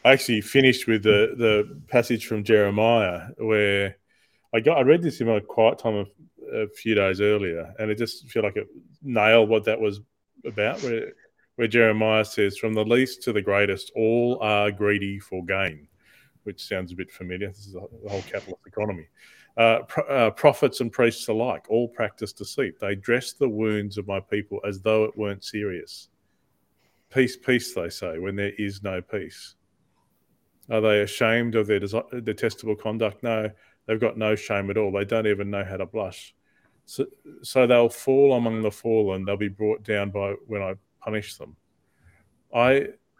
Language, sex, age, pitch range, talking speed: English, male, 30-49, 100-120 Hz, 180 wpm